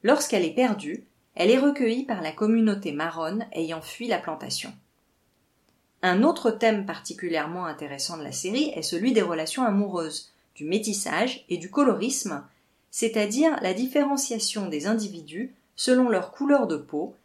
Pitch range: 175-255 Hz